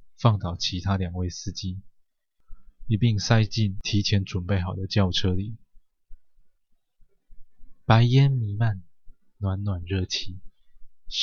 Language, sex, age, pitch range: Chinese, male, 20-39, 95-115 Hz